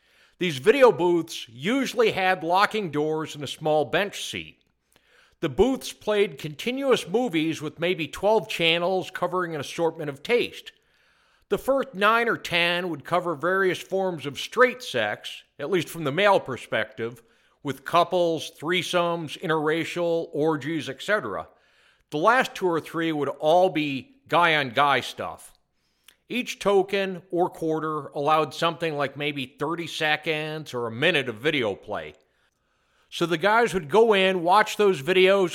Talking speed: 145 wpm